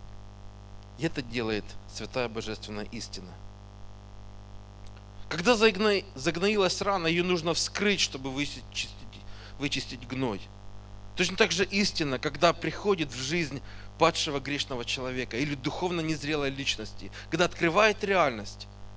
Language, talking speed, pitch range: Russian, 110 wpm, 100-160 Hz